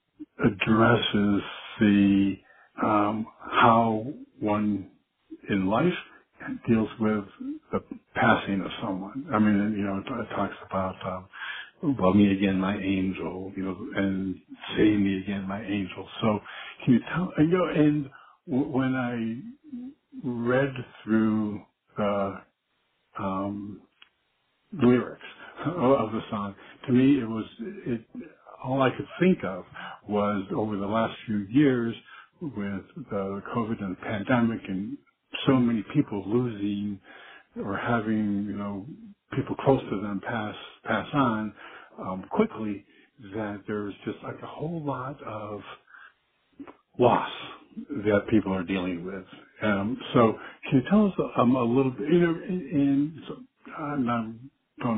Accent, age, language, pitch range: American, 60-79, English, 100-135 Hz